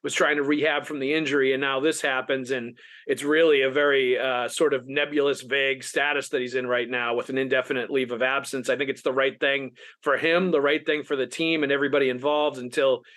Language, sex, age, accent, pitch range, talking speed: English, male, 40-59, American, 130-155 Hz, 230 wpm